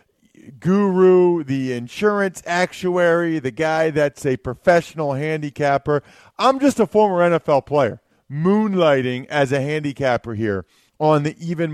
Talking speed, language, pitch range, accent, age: 125 wpm, English, 135-185 Hz, American, 40-59